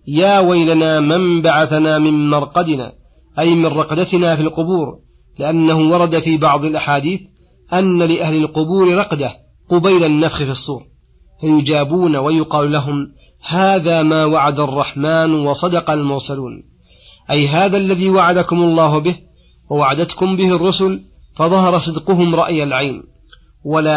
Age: 40-59